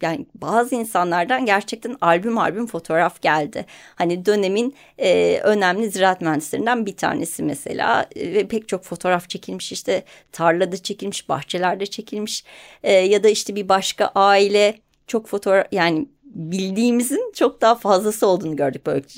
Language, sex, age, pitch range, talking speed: Turkish, female, 30-49, 170-225 Hz, 140 wpm